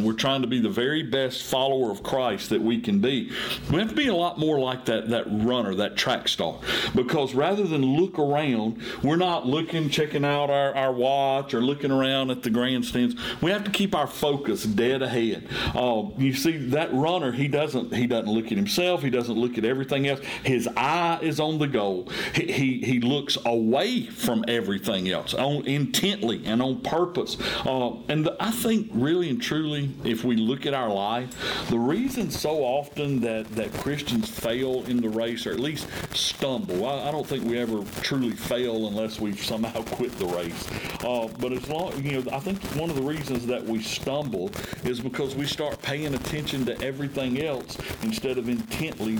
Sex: male